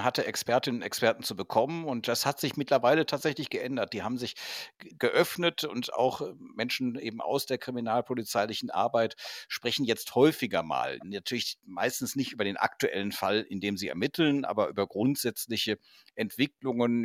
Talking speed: 155 wpm